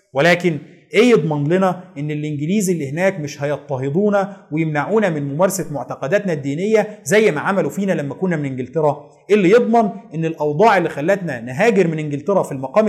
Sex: male